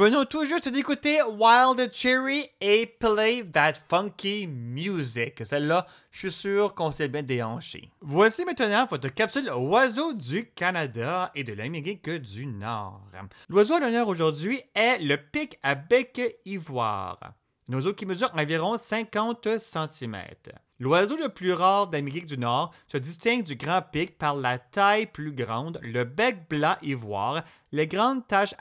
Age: 30-49